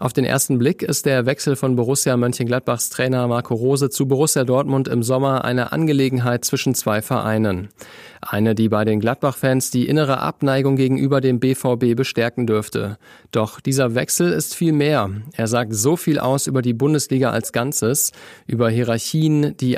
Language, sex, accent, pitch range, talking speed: German, male, German, 120-145 Hz, 165 wpm